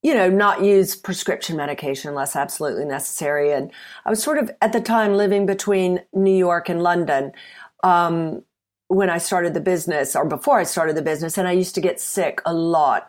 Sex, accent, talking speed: female, American, 195 wpm